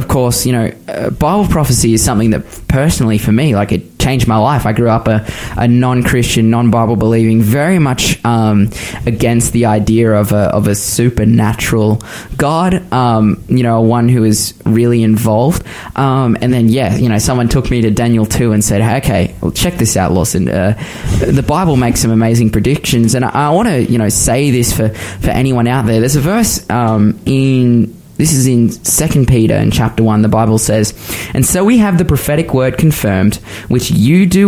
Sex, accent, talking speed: male, Australian, 195 wpm